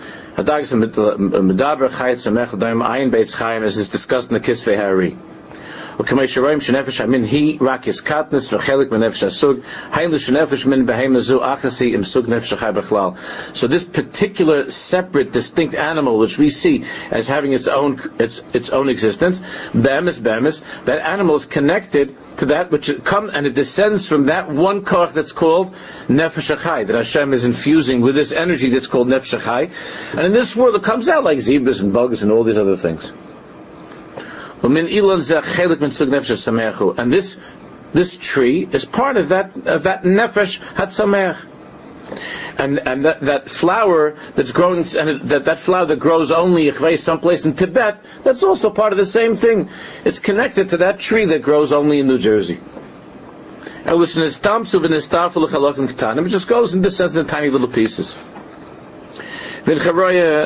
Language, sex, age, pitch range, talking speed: English, male, 50-69, 130-175 Hz, 125 wpm